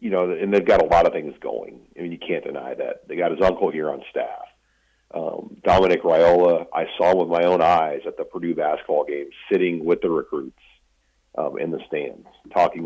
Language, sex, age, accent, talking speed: English, male, 50-69, American, 215 wpm